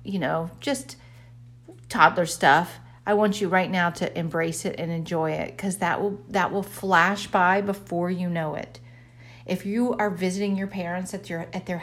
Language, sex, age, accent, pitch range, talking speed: English, female, 40-59, American, 155-200 Hz, 190 wpm